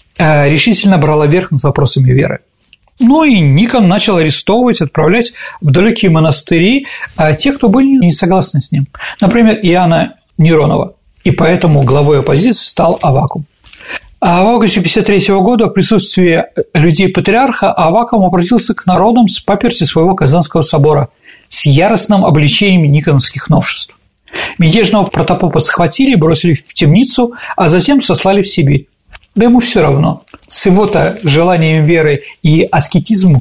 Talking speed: 135 wpm